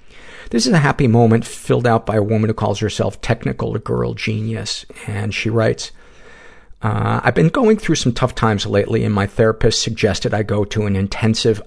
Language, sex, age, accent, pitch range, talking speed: English, male, 50-69, American, 100-120 Hz, 190 wpm